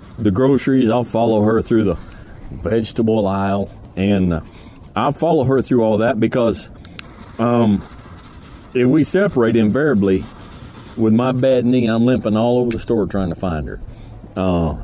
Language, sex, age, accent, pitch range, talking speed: English, male, 50-69, American, 90-120 Hz, 155 wpm